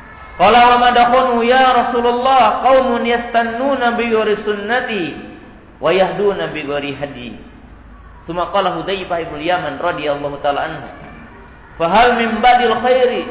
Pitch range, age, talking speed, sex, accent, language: 155-235 Hz, 50-69, 105 wpm, male, Indonesian, Italian